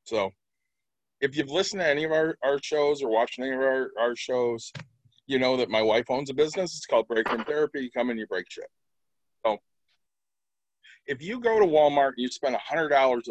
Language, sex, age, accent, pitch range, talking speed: English, male, 40-59, American, 130-190 Hz, 205 wpm